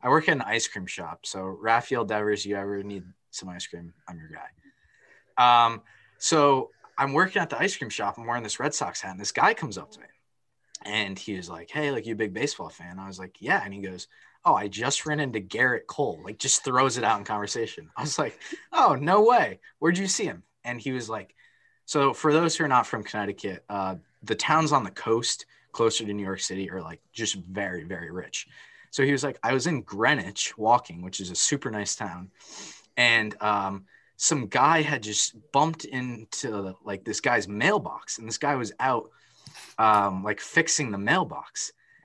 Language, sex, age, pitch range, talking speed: English, male, 20-39, 100-145 Hz, 210 wpm